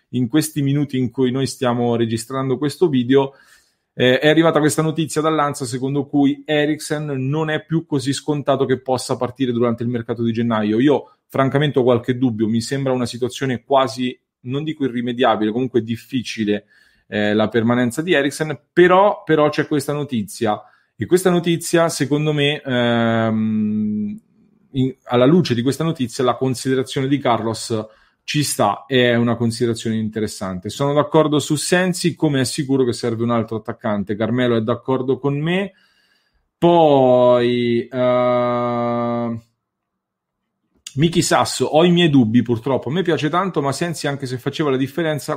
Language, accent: English, Italian